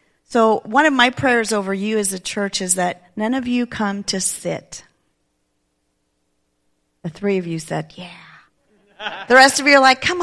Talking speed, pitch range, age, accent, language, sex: 180 wpm, 180-230 Hz, 40-59, American, English, female